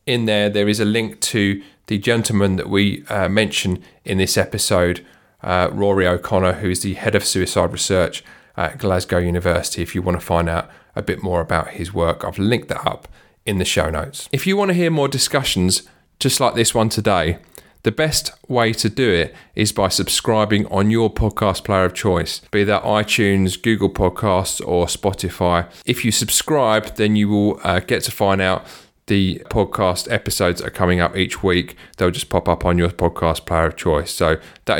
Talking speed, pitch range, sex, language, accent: 195 wpm, 90-115 Hz, male, English, British